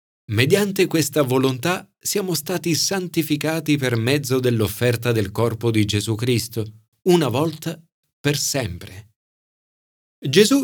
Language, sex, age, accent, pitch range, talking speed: Italian, male, 40-59, native, 105-150 Hz, 105 wpm